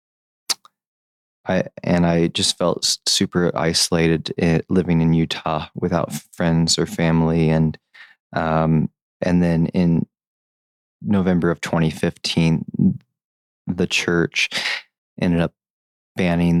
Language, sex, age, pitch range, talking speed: English, male, 20-39, 80-90 Hz, 100 wpm